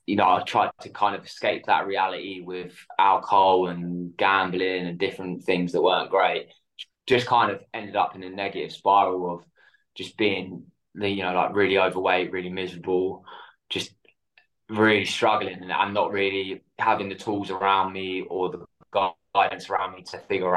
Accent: British